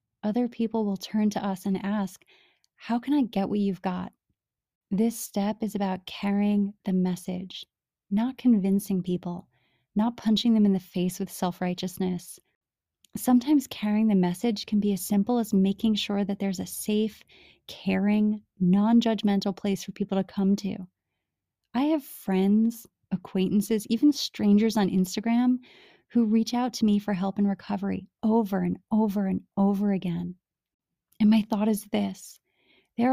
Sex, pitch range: female, 195-225 Hz